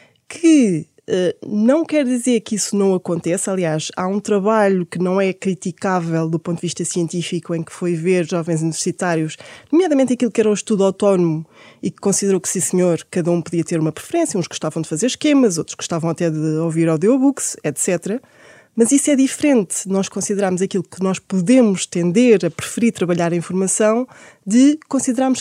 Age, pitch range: 20-39, 180-245 Hz